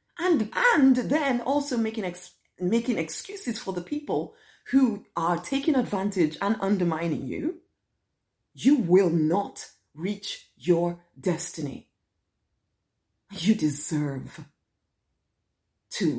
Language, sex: English, female